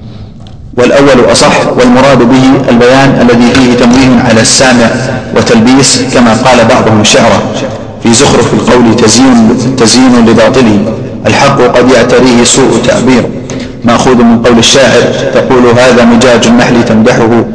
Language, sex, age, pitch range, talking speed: Arabic, male, 40-59, 110-130 Hz, 120 wpm